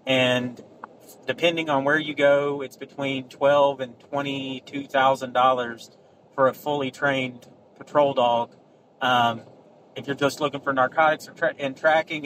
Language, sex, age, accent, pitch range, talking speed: English, male, 30-49, American, 130-145 Hz, 125 wpm